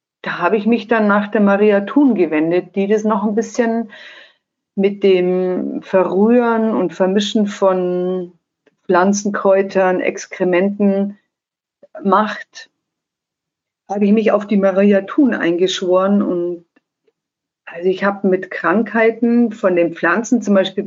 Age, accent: 50-69, German